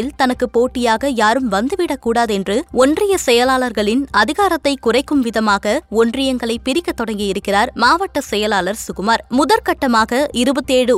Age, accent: 20-39, native